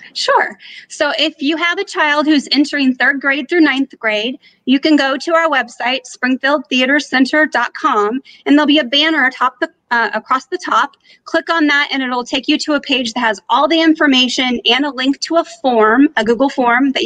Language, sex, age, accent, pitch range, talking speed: English, female, 30-49, American, 235-290 Hz, 200 wpm